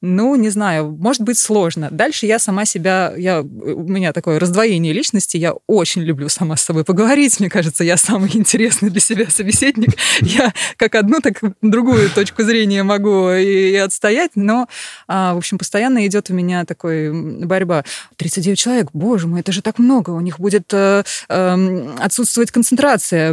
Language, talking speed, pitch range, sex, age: Russian, 170 wpm, 175-230 Hz, female, 20-39